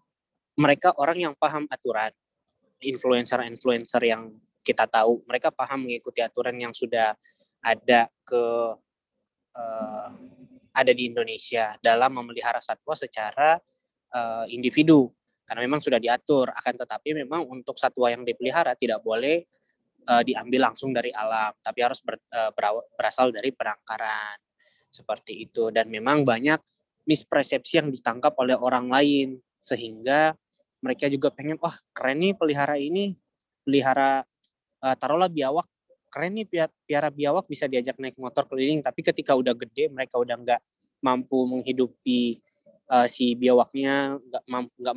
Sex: male